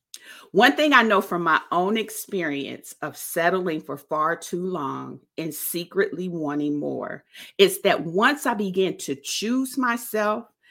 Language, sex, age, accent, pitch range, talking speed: English, female, 40-59, American, 170-245 Hz, 145 wpm